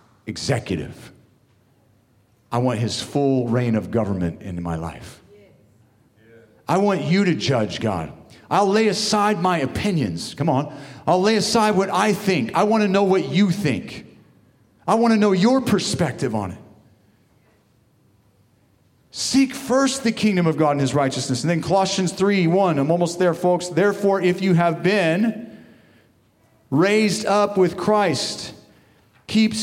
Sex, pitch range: male, 130-205 Hz